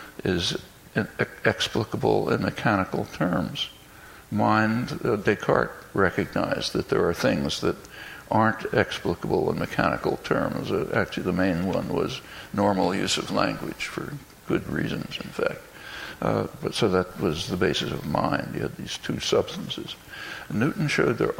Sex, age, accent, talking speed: male, 60-79, American, 145 wpm